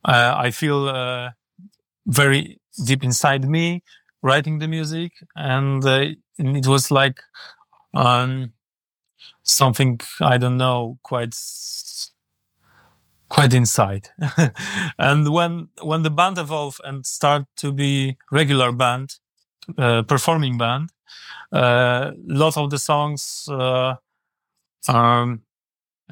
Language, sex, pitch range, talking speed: English, male, 125-155 Hz, 105 wpm